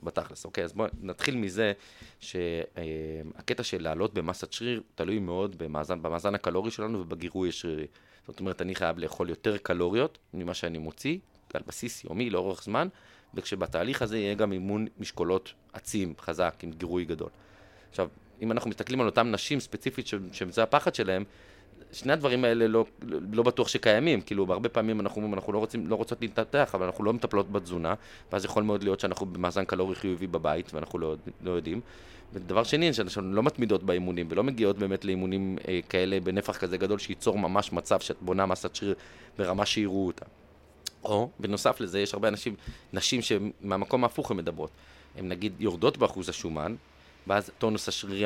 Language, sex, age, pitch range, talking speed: Hebrew, male, 30-49, 90-110 Hz, 170 wpm